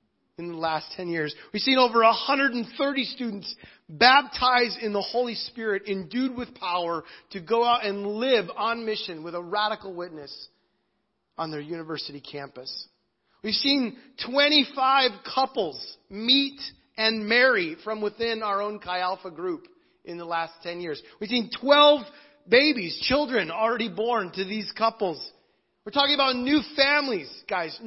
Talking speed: 145 wpm